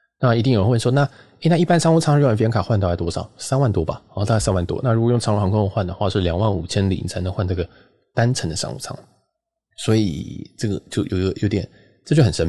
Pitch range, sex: 90-125 Hz, male